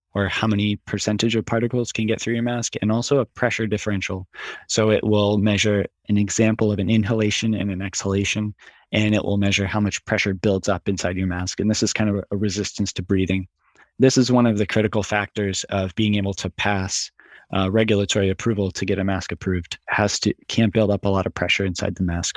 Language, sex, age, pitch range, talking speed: English, male, 20-39, 95-110 Hz, 215 wpm